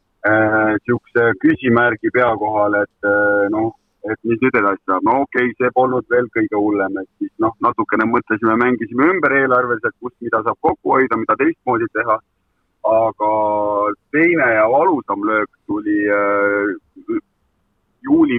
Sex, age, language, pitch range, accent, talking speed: male, 30-49, English, 105-155 Hz, Finnish, 135 wpm